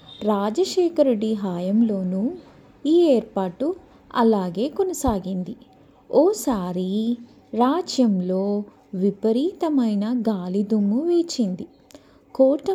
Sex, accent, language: female, native, Telugu